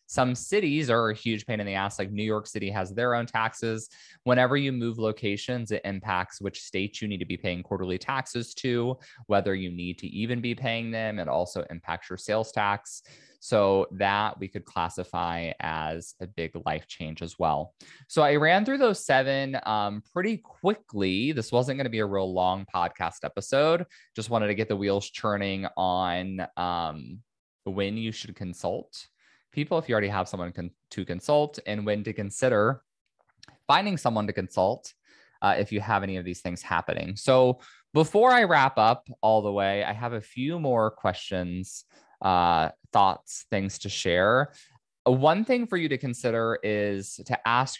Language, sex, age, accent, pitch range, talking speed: English, male, 20-39, American, 95-125 Hz, 180 wpm